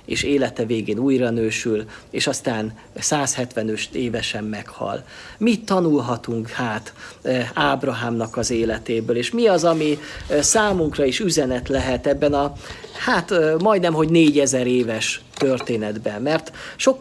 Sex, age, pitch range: male, 50-69, 120-160 Hz